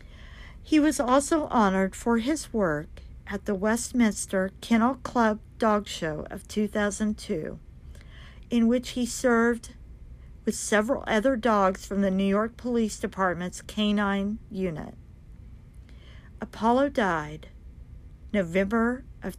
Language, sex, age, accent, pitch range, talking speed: English, female, 50-69, American, 170-215 Hz, 110 wpm